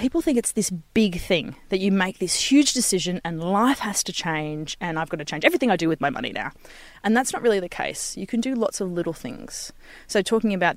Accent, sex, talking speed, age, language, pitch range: Australian, female, 250 wpm, 30-49, English, 165-230 Hz